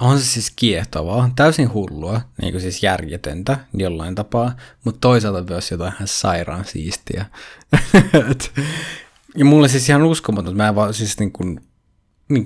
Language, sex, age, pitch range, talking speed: Finnish, male, 20-39, 95-120 Hz, 150 wpm